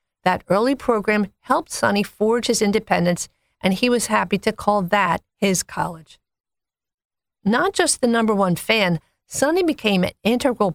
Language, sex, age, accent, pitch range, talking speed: English, female, 50-69, American, 185-240 Hz, 150 wpm